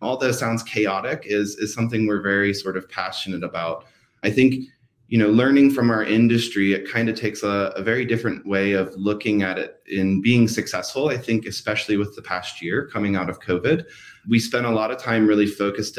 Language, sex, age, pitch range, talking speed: English, male, 20-39, 95-115 Hz, 210 wpm